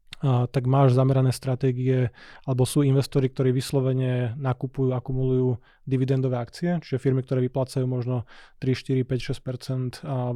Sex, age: male, 20-39